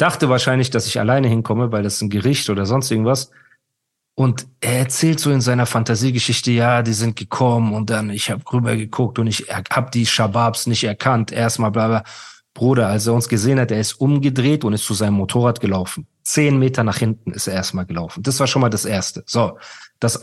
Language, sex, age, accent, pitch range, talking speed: German, male, 40-59, German, 110-135 Hz, 215 wpm